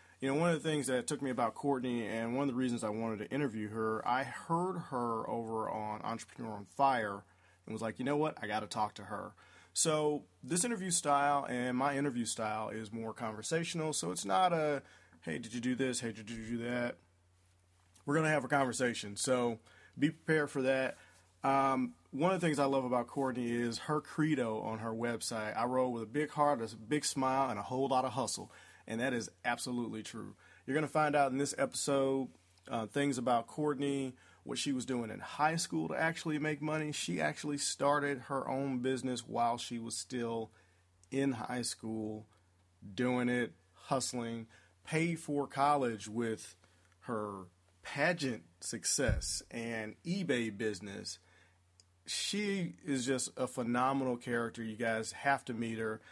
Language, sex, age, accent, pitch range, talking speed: English, male, 30-49, American, 110-140 Hz, 185 wpm